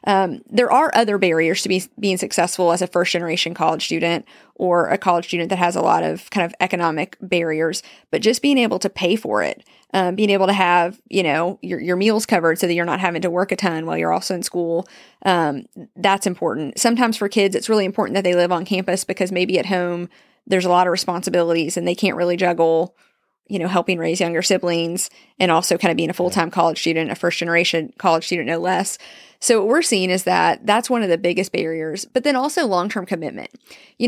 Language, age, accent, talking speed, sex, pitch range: English, 30-49, American, 220 wpm, female, 175-210 Hz